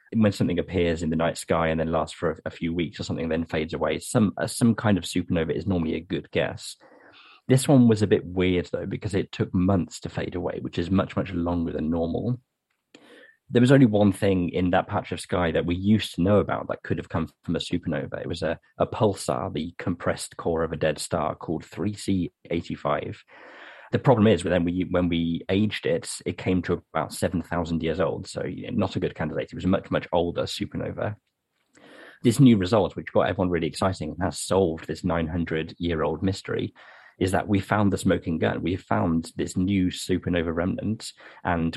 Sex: male